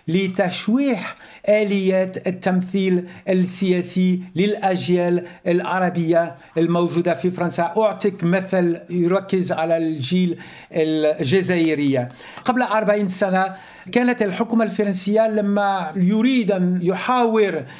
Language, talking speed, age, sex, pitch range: Arabic, 85 wpm, 60-79, male, 175-215 Hz